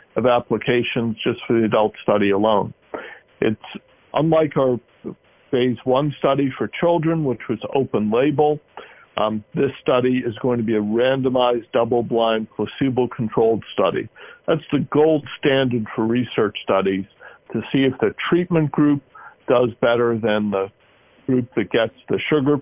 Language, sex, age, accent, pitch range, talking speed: English, male, 60-79, American, 115-140 Hz, 145 wpm